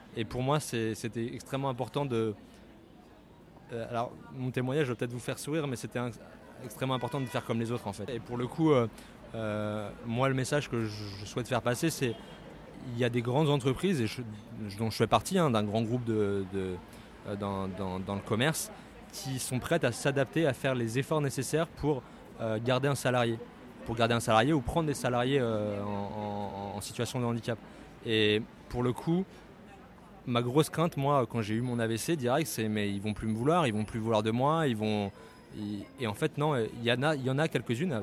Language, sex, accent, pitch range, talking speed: French, male, French, 110-135 Hz, 225 wpm